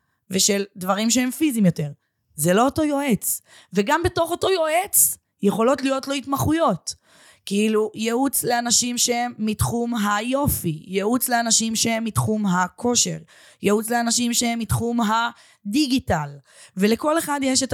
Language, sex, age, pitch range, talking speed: Hebrew, female, 20-39, 195-255 Hz, 125 wpm